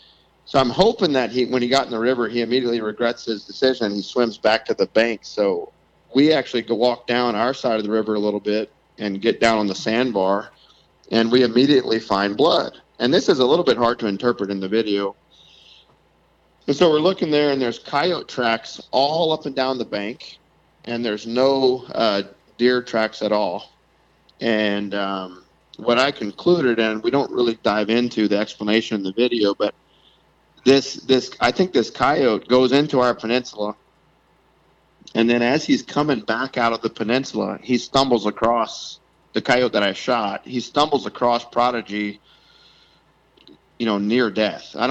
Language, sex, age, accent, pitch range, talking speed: English, male, 40-59, American, 105-125 Hz, 180 wpm